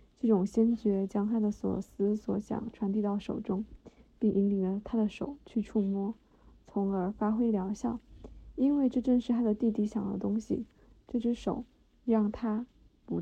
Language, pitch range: Chinese, 205-230 Hz